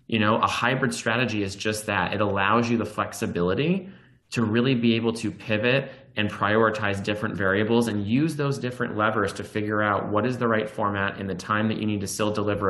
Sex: male